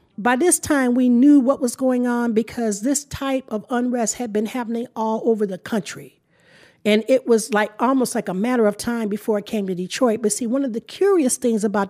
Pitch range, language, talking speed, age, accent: 215-255 Hz, English, 220 wpm, 50-69, American